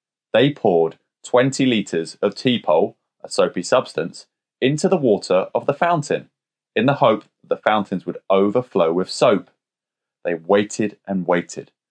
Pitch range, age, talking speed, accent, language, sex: 90-125 Hz, 20-39, 145 wpm, British, English, male